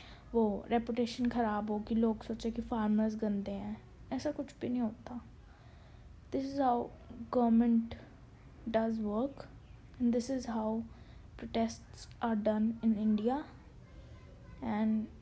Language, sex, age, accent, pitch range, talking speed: English, female, 20-39, Indian, 210-240 Hz, 85 wpm